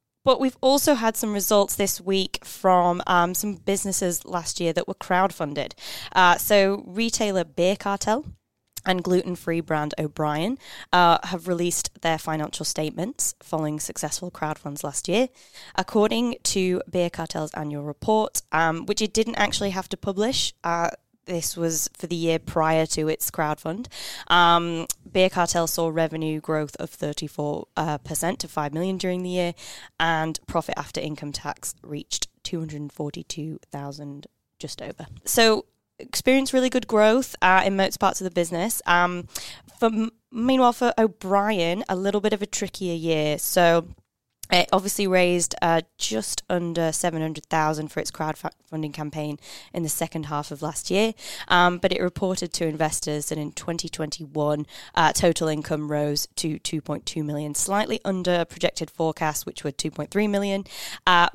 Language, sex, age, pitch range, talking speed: English, female, 10-29, 155-195 Hz, 155 wpm